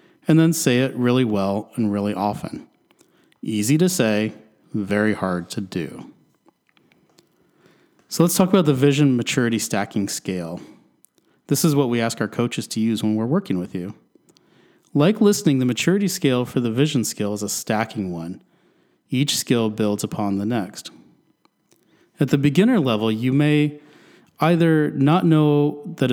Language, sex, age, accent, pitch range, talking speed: English, male, 40-59, American, 110-145 Hz, 155 wpm